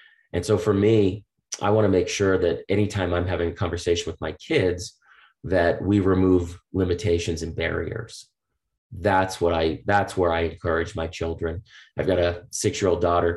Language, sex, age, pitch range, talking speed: English, male, 30-49, 85-105 Hz, 170 wpm